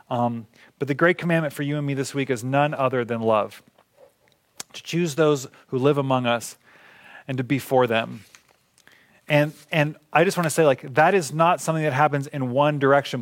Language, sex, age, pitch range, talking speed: English, male, 30-49, 130-155 Hz, 205 wpm